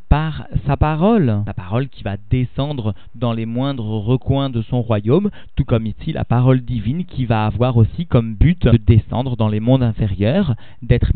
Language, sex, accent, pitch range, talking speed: French, male, French, 115-135 Hz, 185 wpm